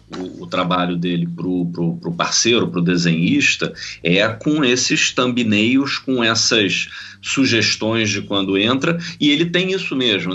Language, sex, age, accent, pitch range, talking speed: Portuguese, male, 40-59, Brazilian, 100-125 Hz, 145 wpm